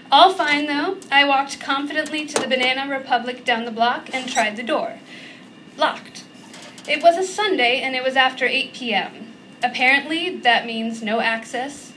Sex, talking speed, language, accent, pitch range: female, 165 wpm, English, American, 235-310 Hz